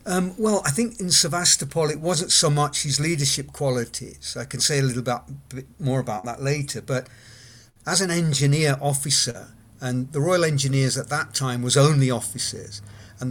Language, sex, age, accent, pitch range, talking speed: English, male, 50-69, British, 125-145 Hz, 180 wpm